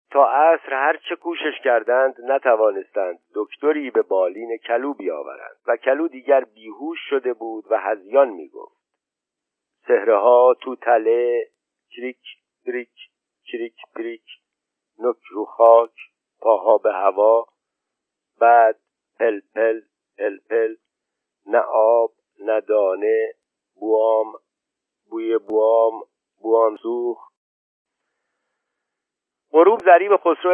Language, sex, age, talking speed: Persian, male, 50-69, 95 wpm